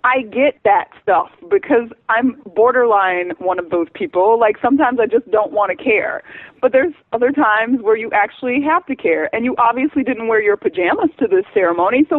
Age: 30-49